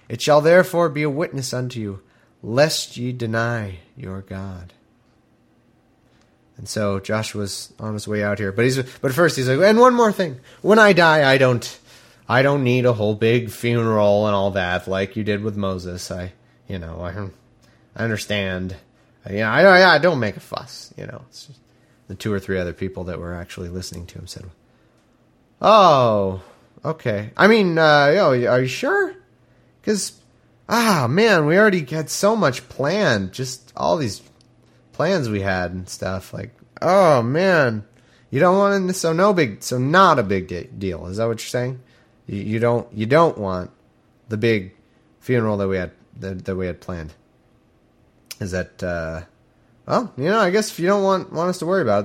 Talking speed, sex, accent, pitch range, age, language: 190 wpm, male, American, 95-145 Hz, 30-49, English